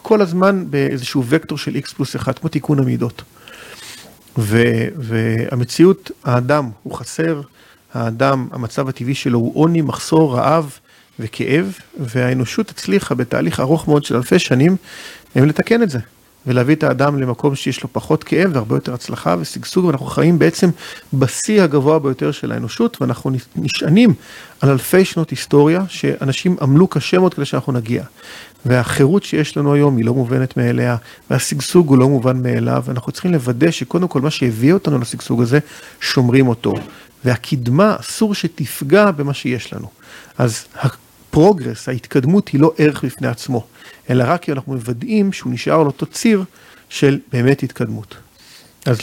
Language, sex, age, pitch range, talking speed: Hebrew, male, 40-59, 125-160 Hz, 145 wpm